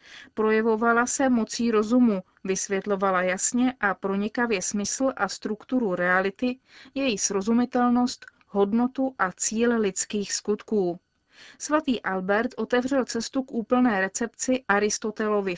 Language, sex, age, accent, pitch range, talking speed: Czech, female, 30-49, native, 200-250 Hz, 105 wpm